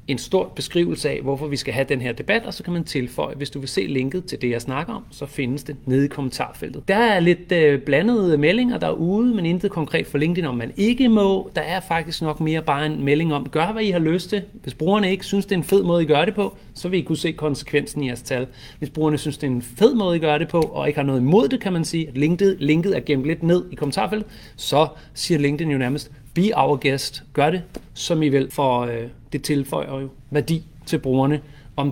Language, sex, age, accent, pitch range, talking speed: Danish, male, 30-49, native, 135-165 Hz, 260 wpm